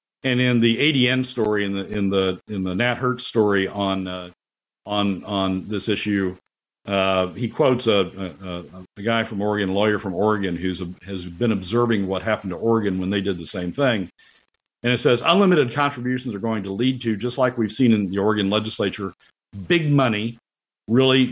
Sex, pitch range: male, 95-120 Hz